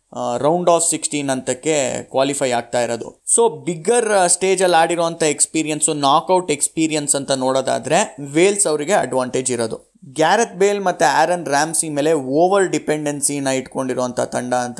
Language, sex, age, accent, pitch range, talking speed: Kannada, male, 20-39, native, 135-165 Hz, 135 wpm